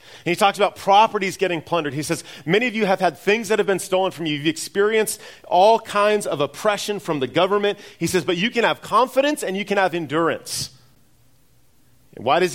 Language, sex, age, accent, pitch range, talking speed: English, male, 40-59, American, 130-185 Hz, 215 wpm